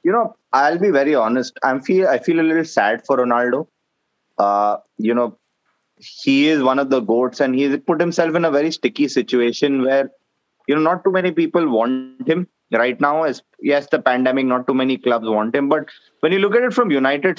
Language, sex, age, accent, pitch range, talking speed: English, male, 20-39, Indian, 125-160 Hz, 215 wpm